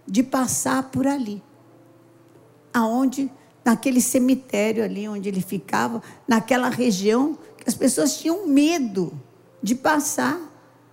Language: Portuguese